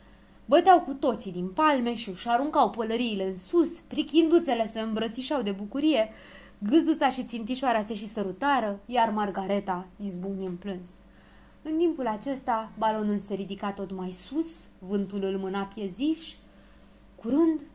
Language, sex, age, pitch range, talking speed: Romanian, female, 20-39, 190-275 Hz, 140 wpm